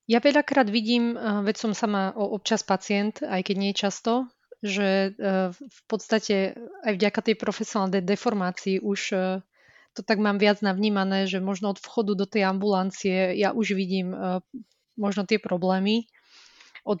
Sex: female